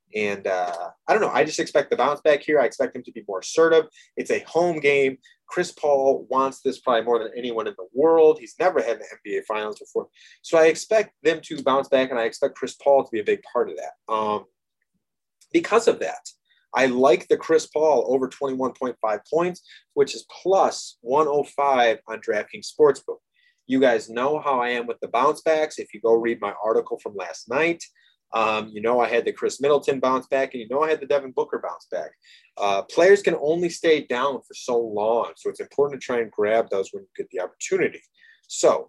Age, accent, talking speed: 30-49, American, 220 wpm